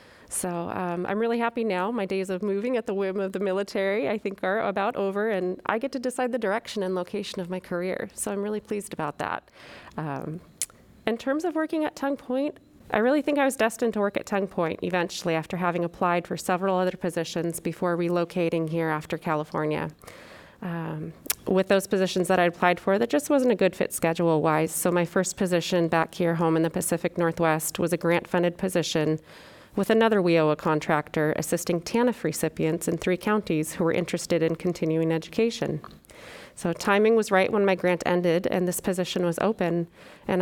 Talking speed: 195 wpm